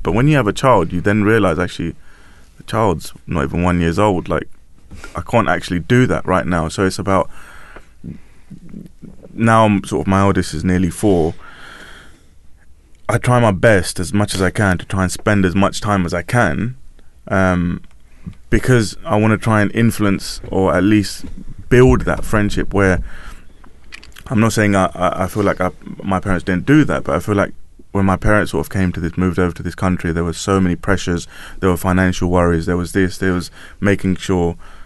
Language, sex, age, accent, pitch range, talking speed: English, male, 20-39, British, 90-105 Hz, 200 wpm